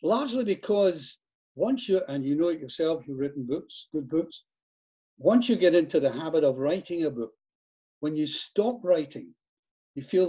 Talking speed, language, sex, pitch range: 175 wpm, English, male, 135-170 Hz